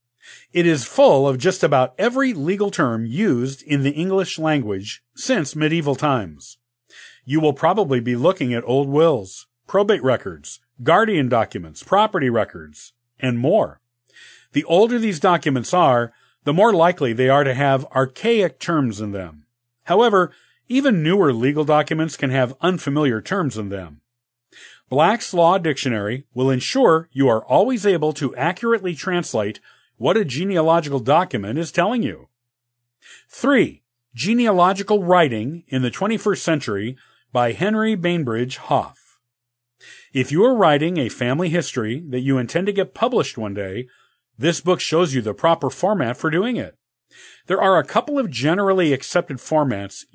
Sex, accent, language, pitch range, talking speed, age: male, American, English, 125-175 Hz, 145 wpm, 50-69